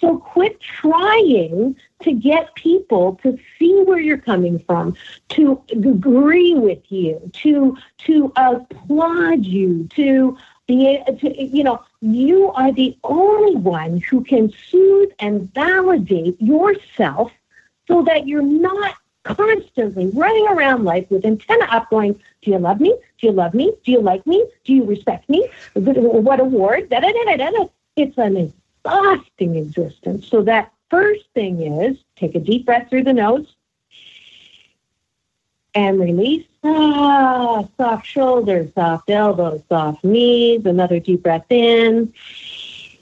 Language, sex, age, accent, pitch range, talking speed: English, female, 50-69, American, 195-310 Hz, 135 wpm